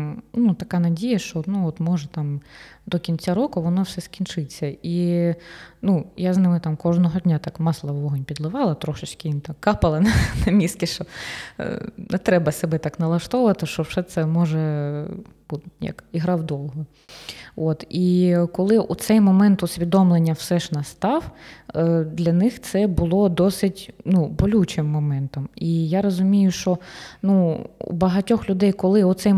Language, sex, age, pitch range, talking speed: Ukrainian, female, 20-39, 155-195 Hz, 145 wpm